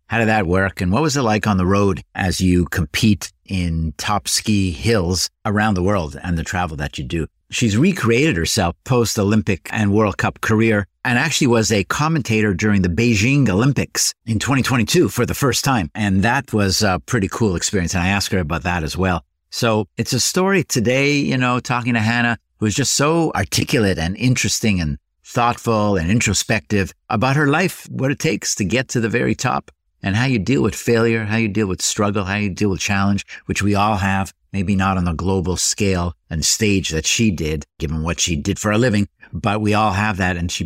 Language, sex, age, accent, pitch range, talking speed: English, male, 50-69, American, 90-115 Hz, 210 wpm